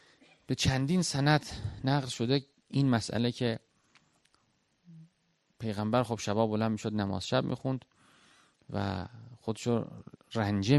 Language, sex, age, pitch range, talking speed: Persian, male, 30-49, 100-130 Hz, 105 wpm